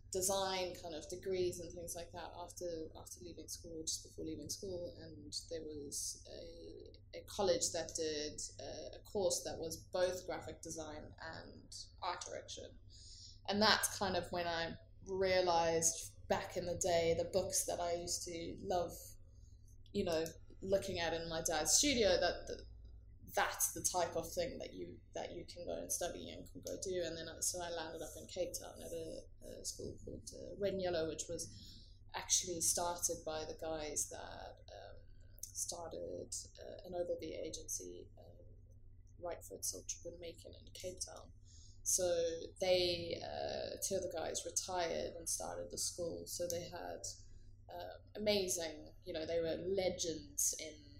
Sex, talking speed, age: female, 170 wpm, 10-29